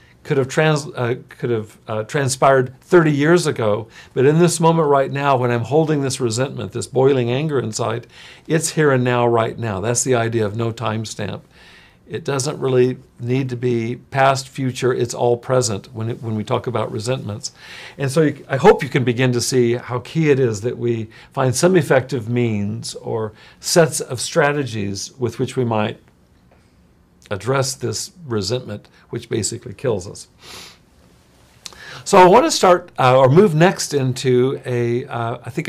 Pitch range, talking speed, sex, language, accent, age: 115-140 Hz, 170 wpm, male, English, American, 50-69